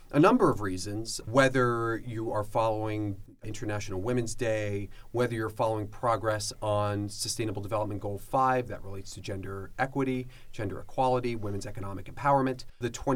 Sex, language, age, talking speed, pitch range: male, English, 30-49, 140 wpm, 105-135 Hz